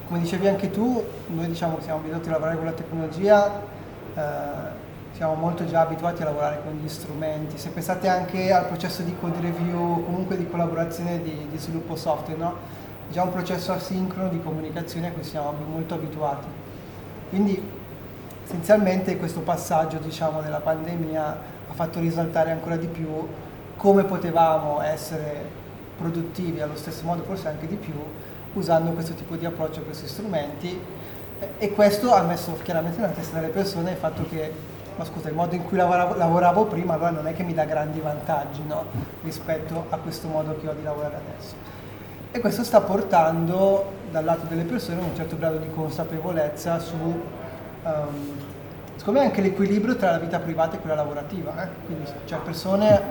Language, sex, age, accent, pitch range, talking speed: Italian, male, 20-39, native, 155-180 Hz, 170 wpm